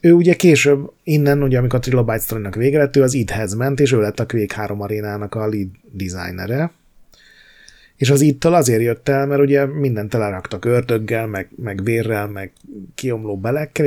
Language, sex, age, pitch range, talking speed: Hungarian, male, 30-49, 110-140 Hz, 175 wpm